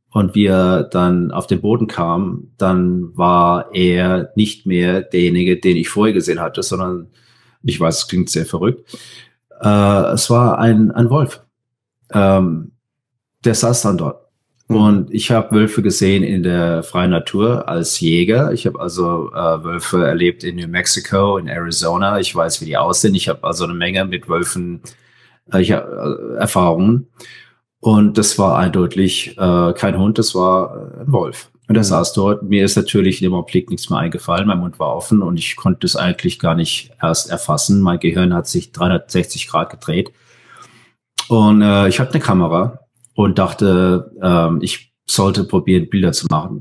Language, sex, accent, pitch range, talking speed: German, male, German, 90-110 Hz, 175 wpm